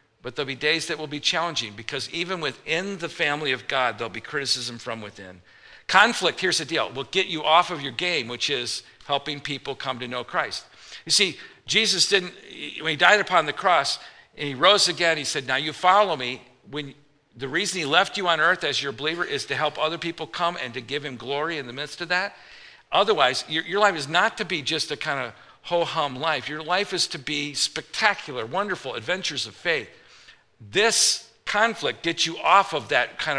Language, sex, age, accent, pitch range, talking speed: English, male, 50-69, American, 130-165 Hz, 210 wpm